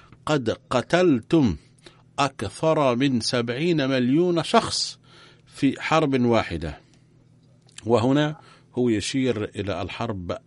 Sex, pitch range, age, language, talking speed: male, 110-140 Hz, 50-69, Arabic, 85 wpm